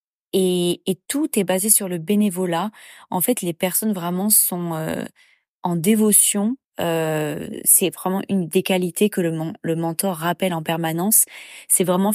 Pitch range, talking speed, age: 170-200 Hz, 160 wpm, 20-39